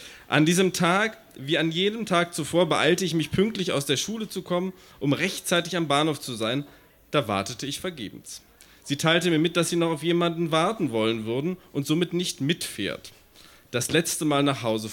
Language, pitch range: German, 140-180 Hz